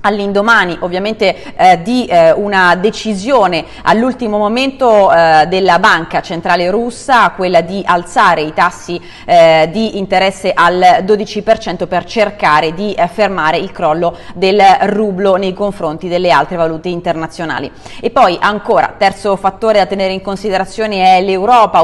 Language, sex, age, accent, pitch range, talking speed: Italian, female, 30-49, native, 175-215 Hz, 135 wpm